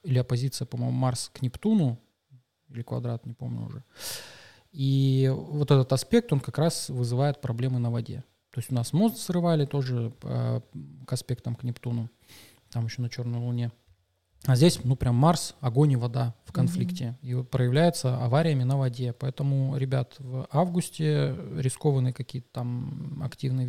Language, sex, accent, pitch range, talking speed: Russian, male, native, 125-145 Hz, 155 wpm